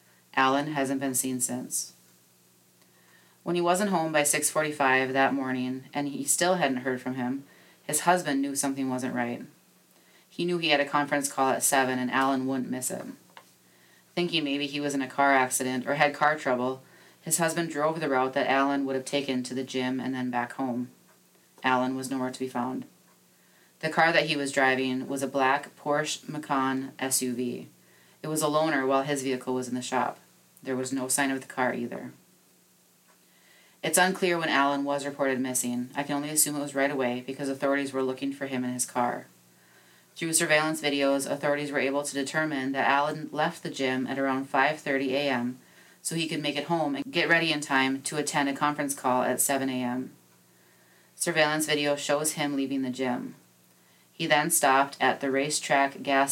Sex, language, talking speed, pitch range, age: female, English, 190 wpm, 130-145 Hz, 20-39